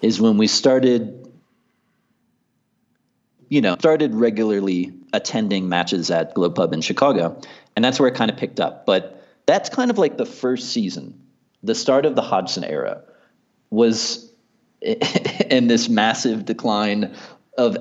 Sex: male